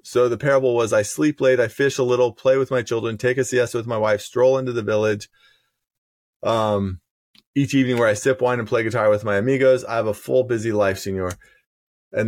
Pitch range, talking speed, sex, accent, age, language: 110-130 Hz, 225 wpm, male, American, 20-39, English